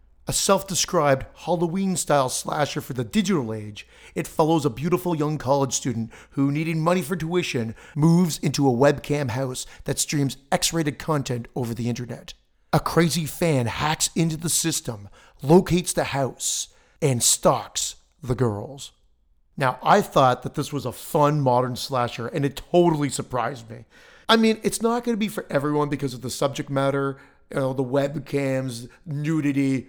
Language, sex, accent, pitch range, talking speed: English, male, American, 130-165 Hz, 160 wpm